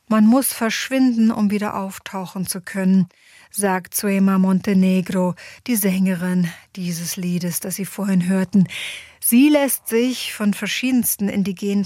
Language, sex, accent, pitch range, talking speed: German, female, German, 190-225 Hz, 125 wpm